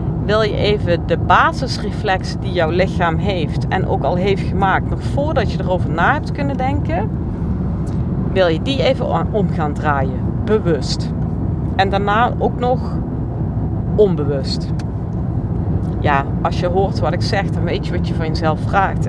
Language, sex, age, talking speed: Dutch, female, 40-59, 155 wpm